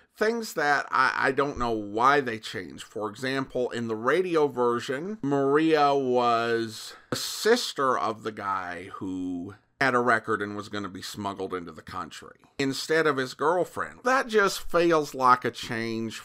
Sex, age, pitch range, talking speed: male, 50-69, 115-160 Hz, 165 wpm